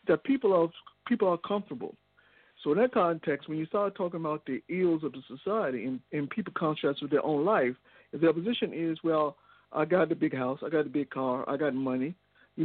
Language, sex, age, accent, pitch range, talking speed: English, male, 60-79, American, 145-185 Hz, 220 wpm